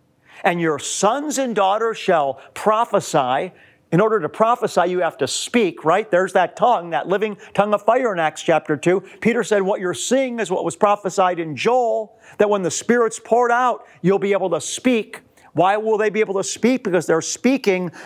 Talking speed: 200 wpm